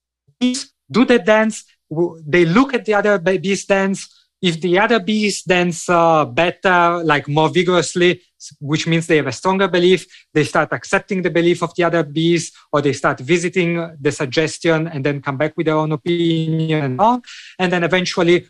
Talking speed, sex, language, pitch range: 180 wpm, male, English, 150-190 Hz